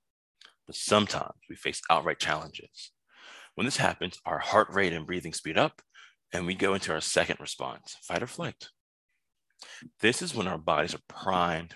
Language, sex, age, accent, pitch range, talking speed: English, male, 30-49, American, 80-100 Hz, 170 wpm